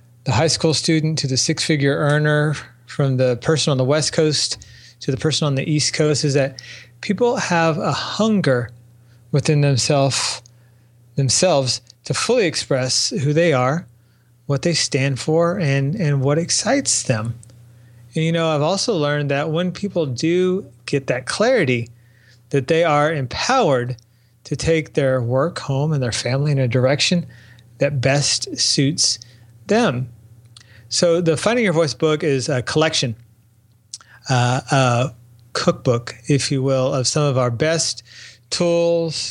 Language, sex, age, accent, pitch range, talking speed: English, male, 30-49, American, 120-155 Hz, 150 wpm